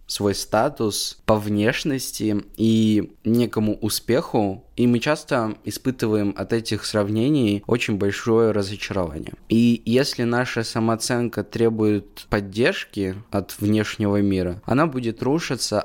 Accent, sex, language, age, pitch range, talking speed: native, male, Russian, 20-39, 100-120 Hz, 110 wpm